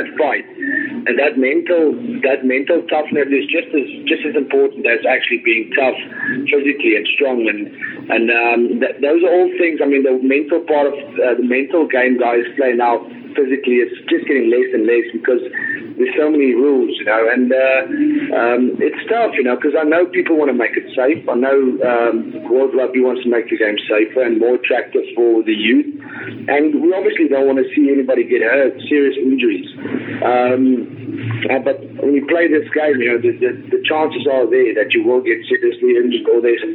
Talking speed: 200 wpm